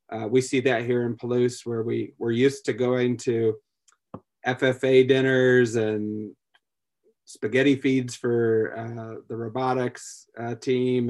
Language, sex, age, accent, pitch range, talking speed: English, male, 30-49, American, 115-130 Hz, 135 wpm